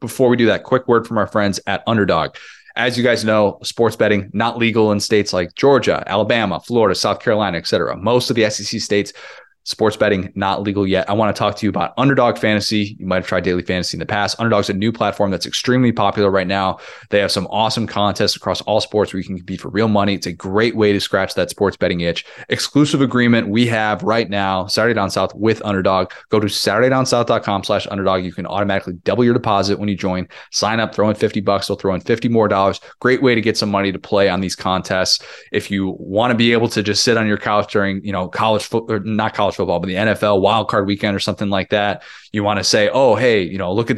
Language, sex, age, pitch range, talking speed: English, male, 20-39, 100-115 Hz, 245 wpm